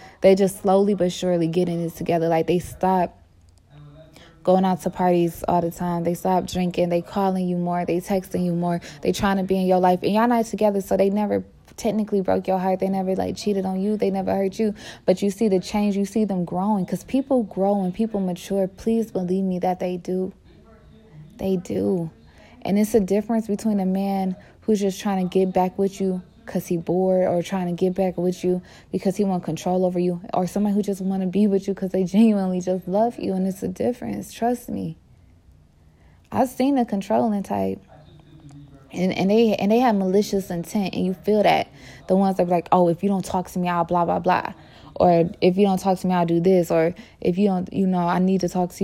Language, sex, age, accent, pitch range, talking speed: English, female, 20-39, American, 175-200 Hz, 230 wpm